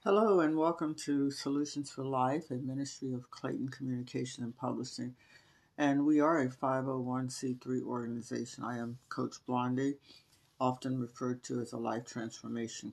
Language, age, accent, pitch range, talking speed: English, 60-79, American, 120-140 Hz, 145 wpm